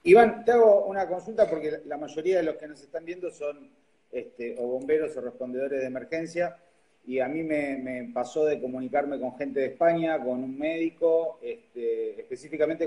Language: Spanish